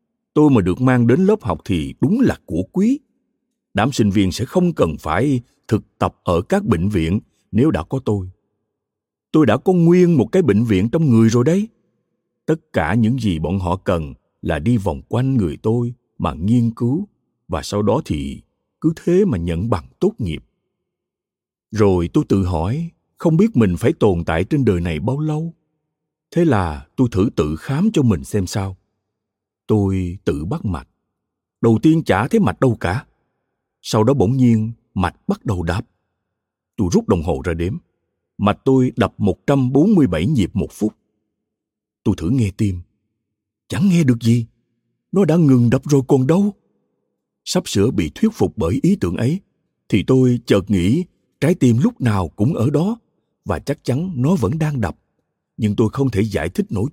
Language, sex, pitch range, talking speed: Vietnamese, male, 100-150 Hz, 185 wpm